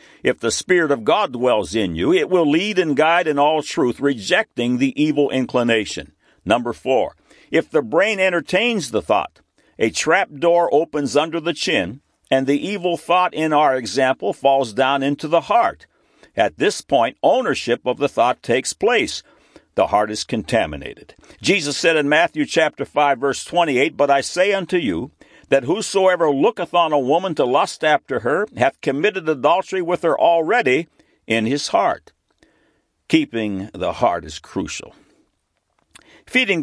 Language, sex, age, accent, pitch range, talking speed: English, male, 60-79, American, 135-180 Hz, 160 wpm